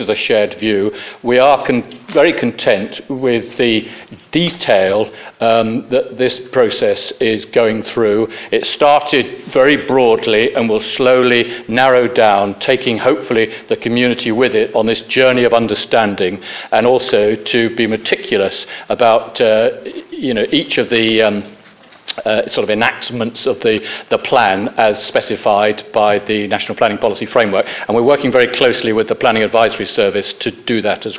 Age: 50-69